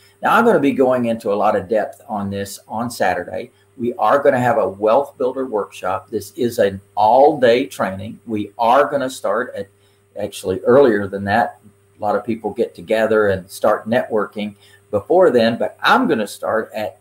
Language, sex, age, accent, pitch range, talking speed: English, male, 50-69, American, 100-125 Hz, 200 wpm